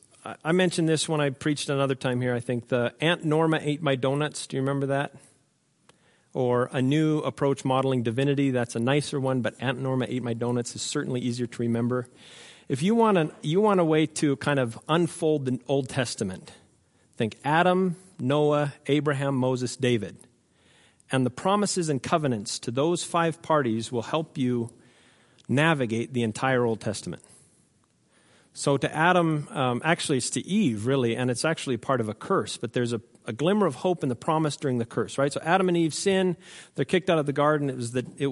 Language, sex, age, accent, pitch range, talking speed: English, male, 40-59, American, 125-160 Hz, 195 wpm